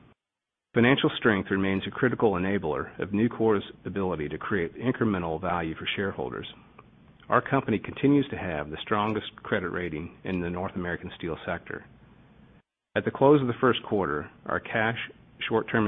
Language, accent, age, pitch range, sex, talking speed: English, American, 40-59, 90-115 Hz, male, 150 wpm